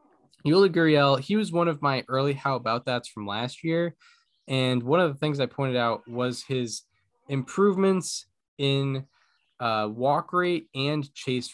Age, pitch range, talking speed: 10-29, 115-140 Hz, 160 wpm